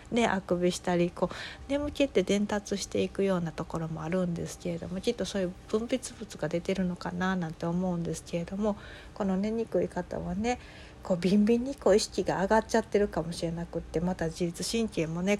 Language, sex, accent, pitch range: Japanese, female, native, 170-205 Hz